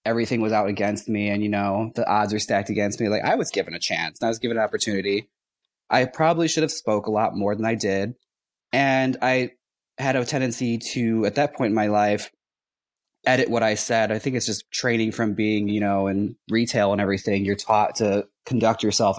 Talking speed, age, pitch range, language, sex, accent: 220 wpm, 20-39, 100-115 Hz, English, male, American